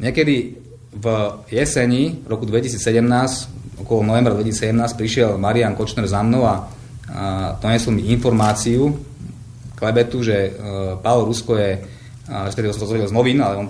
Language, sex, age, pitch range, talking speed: Slovak, male, 30-49, 105-120 Hz, 130 wpm